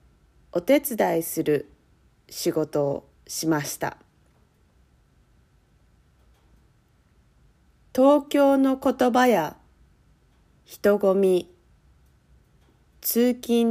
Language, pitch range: Japanese, 145-220 Hz